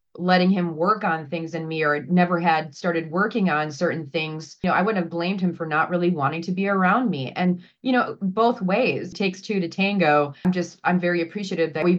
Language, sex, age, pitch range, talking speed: English, female, 30-49, 160-190 Hz, 230 wpm